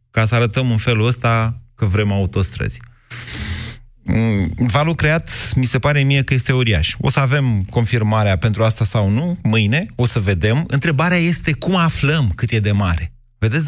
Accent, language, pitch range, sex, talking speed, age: native, Romanian, 105-135 Hz, male, 170 wpm, 30-49